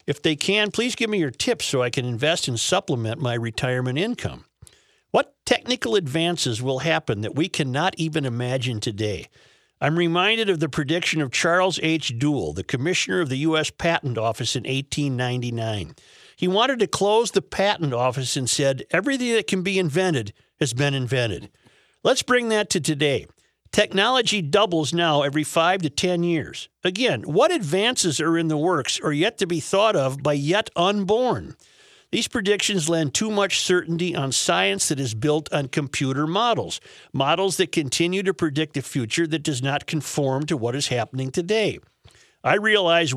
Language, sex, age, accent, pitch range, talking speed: English, male, 50-69, American, 135-185 Hz, 170 wpm